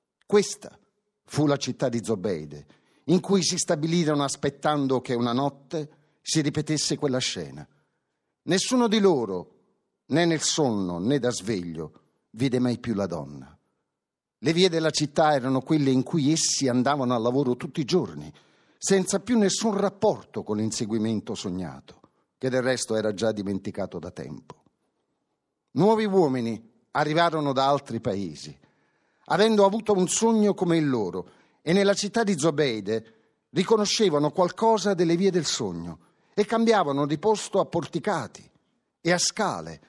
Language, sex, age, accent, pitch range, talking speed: Italian, male, 50-69, native, 125-185 Hz, 145 wpm